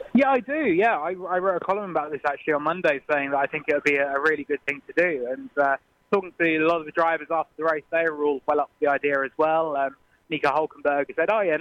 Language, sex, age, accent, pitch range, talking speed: English, male, 20-39, British, 145-170 Hz, 290 wpm